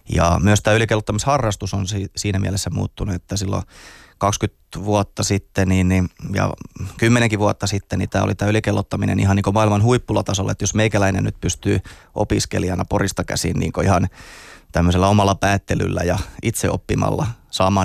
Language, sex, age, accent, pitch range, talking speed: Finnish, male, 20-39, native, 95-105 Hz, 150 wpm